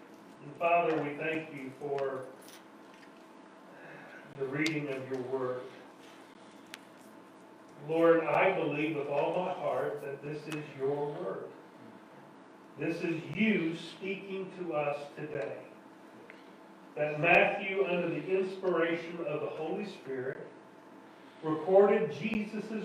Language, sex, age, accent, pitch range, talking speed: English, male, 40-59, American, 145-185 Hz, 105 wpm